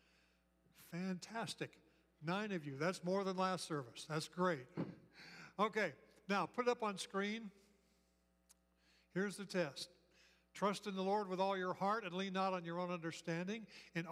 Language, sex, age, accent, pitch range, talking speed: English, male, 60-79, American, 140-180 Hz, 155 wpm